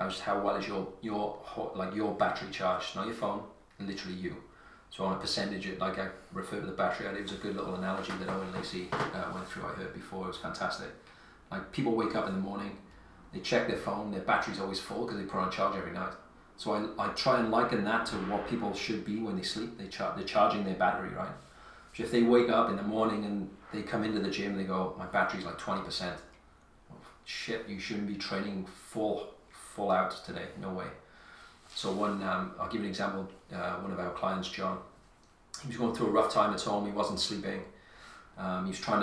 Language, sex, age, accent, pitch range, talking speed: English, male, 30-49, British, 95-110 Hz, 235 wpm